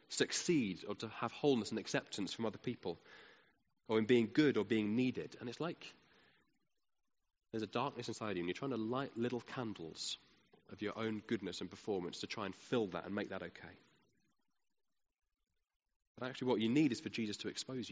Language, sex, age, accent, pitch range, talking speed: English, male, 20-39, British, 110-140 Hz, 190 wpm